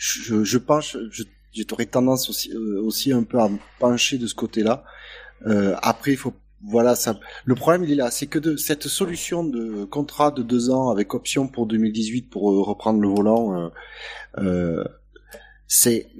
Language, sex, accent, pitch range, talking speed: French, male, French, 105-140 Hz, 180 wpm